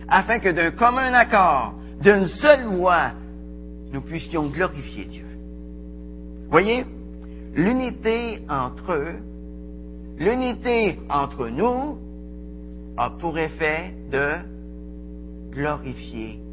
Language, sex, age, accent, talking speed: French, male, 60-79, French, 85 wpm